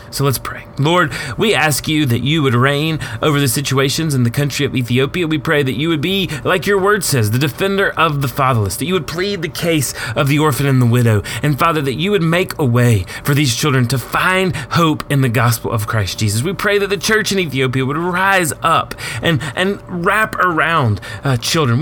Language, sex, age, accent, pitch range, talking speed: English, male, 30-49, American, 130-180 Hz, 225 wpm